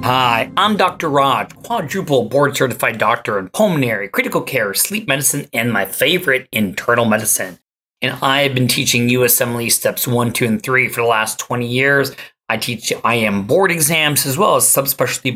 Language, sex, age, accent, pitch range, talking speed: English, male, 30-49, American, 115-135 Hz, 170 wpm